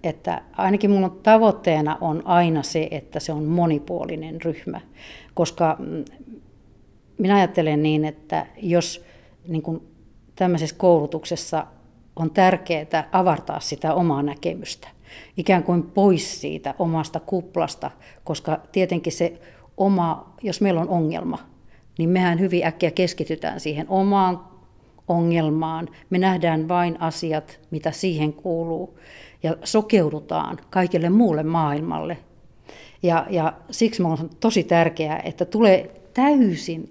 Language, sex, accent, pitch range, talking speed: Finnish, female, native, 160-185 Hz, 110 wpm